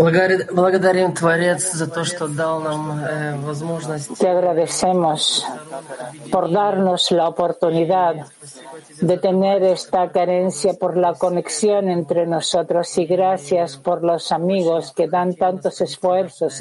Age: 50-69